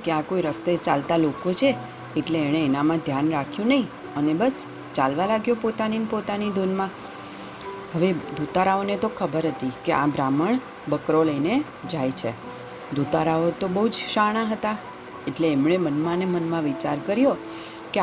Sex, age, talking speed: female, 40-59, 150 wpm